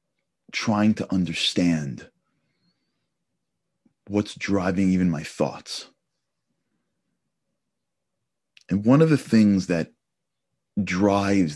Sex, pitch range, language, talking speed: male, 85-105 Hz, English, 80 wpm